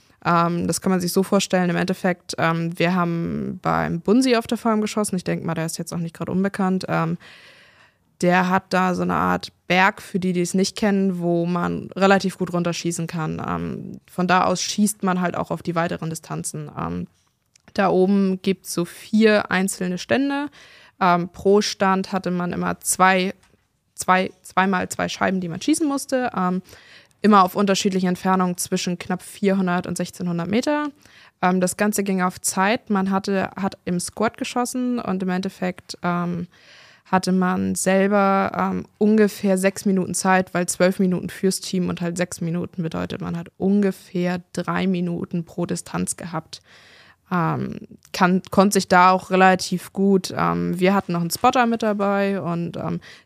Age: 20-39